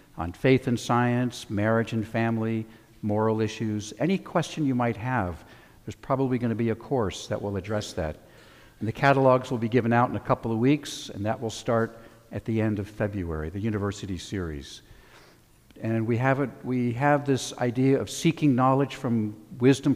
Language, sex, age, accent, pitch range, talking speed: English, male, 60-79, American, 105-135 Hz, 180 wpm